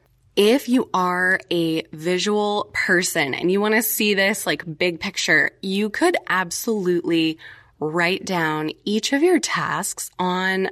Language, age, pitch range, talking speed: English, 20-39, 175-225 Hz, 140 wpm